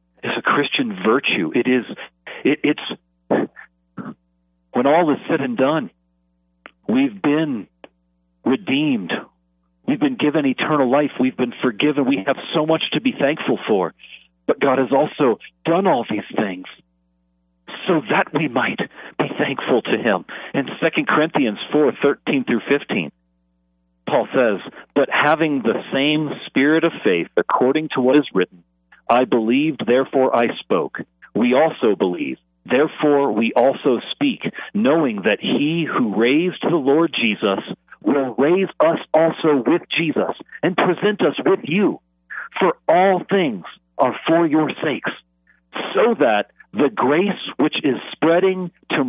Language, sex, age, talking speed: English, male, 50-69, 140 wpm